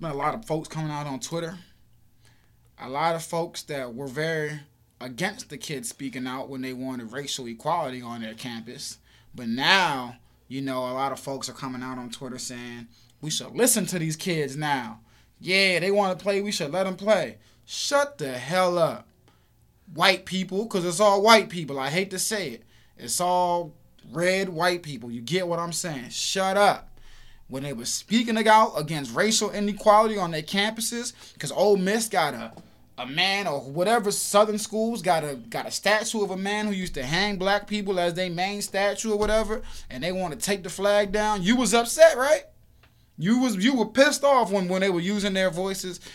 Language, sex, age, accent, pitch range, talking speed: English, male, 20-39, American, 135-205 Hz, 200 wpm